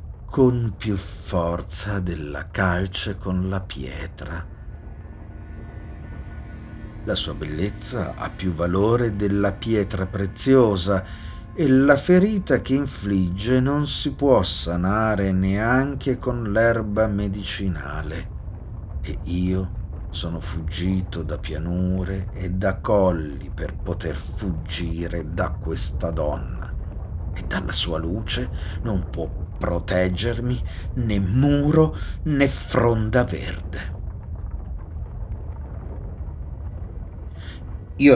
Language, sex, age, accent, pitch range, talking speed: Italian, male, 50-69, native, 85-110 Hz, 95 wpm